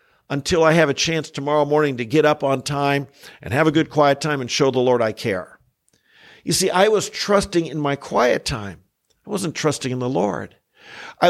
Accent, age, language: American, 50-69, English